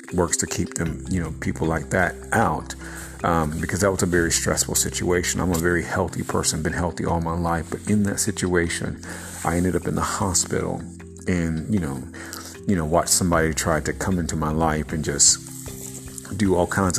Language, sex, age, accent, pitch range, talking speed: English, male, 50-69, American, 80-100 Hz, 200 wpm